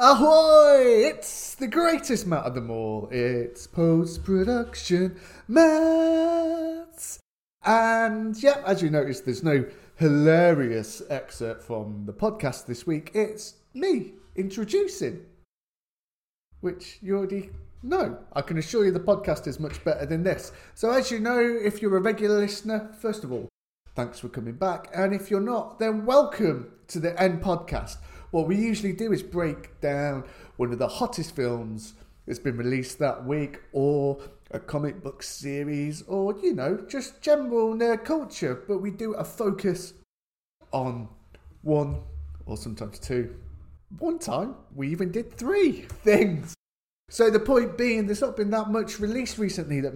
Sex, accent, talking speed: male, British, 155 wpm